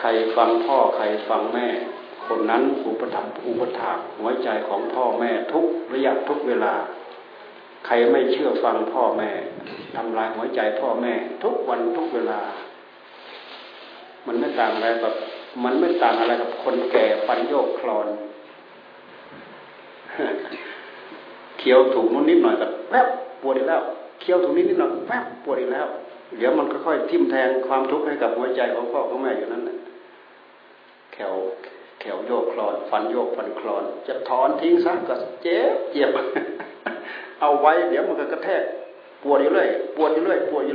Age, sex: 60-79, male